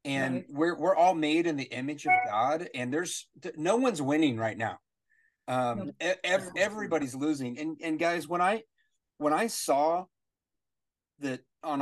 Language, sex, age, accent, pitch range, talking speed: English, male, 30-49, American, 125-175 Hz, 160 wpm